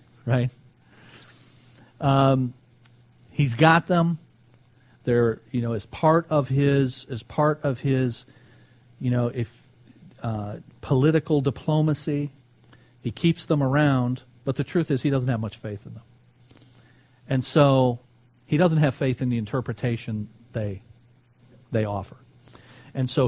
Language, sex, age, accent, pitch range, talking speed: English, male, 40-59, American, 120-145 Hz, 130 wpm